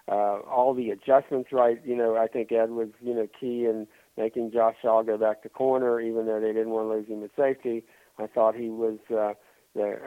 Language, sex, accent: English, male, American